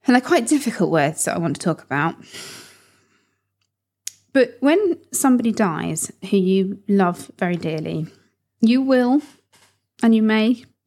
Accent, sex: British, female